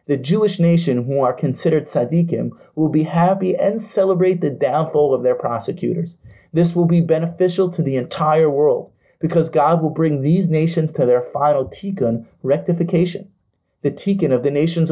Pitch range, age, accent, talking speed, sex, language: 140-175 Hz, 30-49, American, 165 wpm, male, English